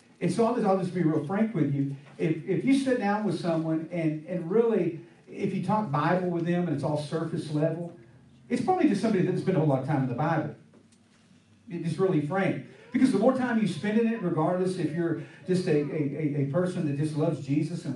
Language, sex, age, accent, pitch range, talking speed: English, male, 40-59, American, 155-205 Hz, 230 wpm